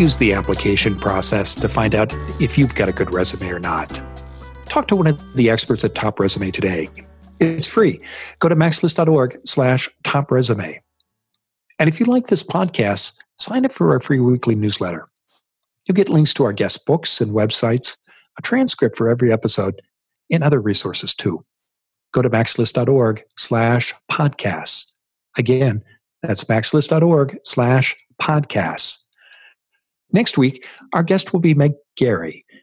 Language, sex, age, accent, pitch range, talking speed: English, male, 50-69, American, 105-155 Hz, 150 wpm